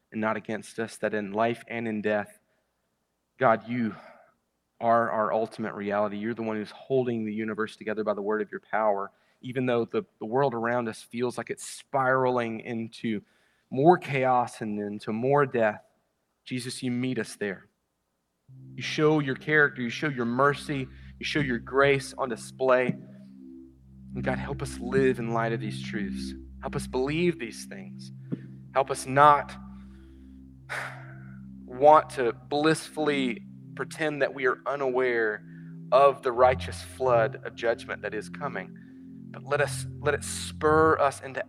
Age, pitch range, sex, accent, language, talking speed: 30-49, 90-135 Hz, male, American, English, 160 wpm